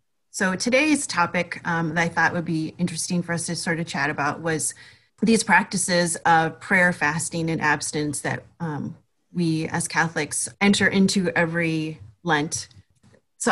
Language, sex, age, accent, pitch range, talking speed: English, female, 30-49, American, 165-210 Hz, 155 wpm